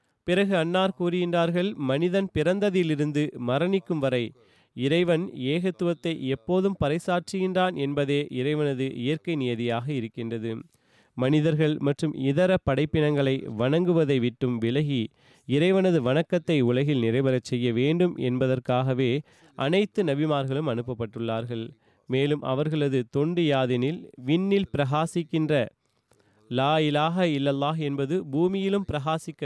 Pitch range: 130-170 Hz